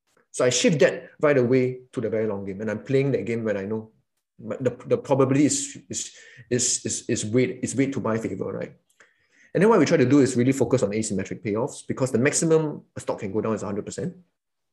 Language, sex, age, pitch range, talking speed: English, male, 20-39, 110-135 Hz, 240 wpm